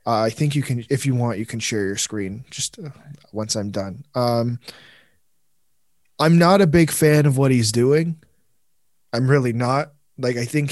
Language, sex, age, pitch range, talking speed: English, male, 20-39, 125-165 Hz, 190 wpm